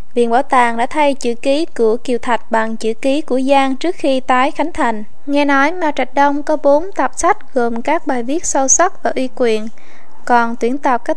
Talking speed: 225 wpm